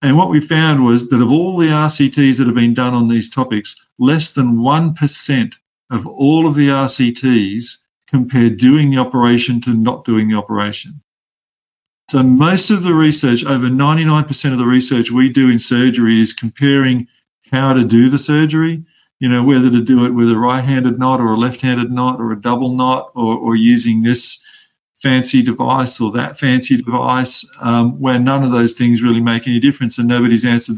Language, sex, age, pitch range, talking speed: Danish, male, 50-69, 120-135 Hz, 185 wpm